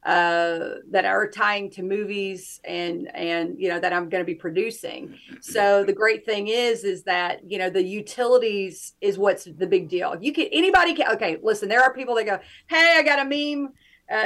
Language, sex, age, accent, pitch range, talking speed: English, female, 40-59, American, 190-240 Hz, 205 wpm